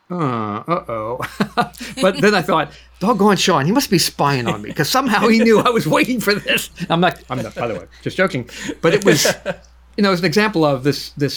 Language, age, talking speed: English, 50-69, 230 wpm